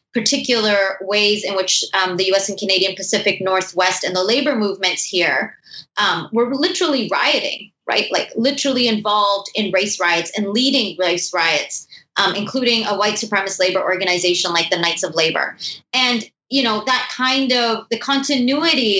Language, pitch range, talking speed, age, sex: English, 195-245 Hz, 160 wpm, 20-39, female